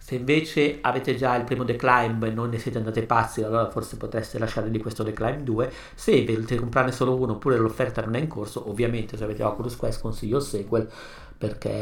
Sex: male